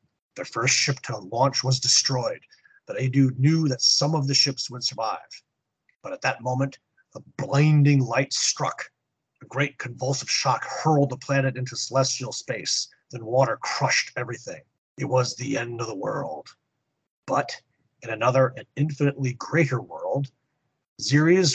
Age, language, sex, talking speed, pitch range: 30-49, English, male, 150 wpm, 130-150 Hz